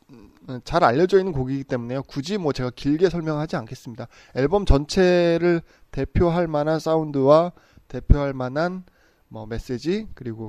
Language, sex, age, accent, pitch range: Korean, male, 20-39, native, 115-145 Hz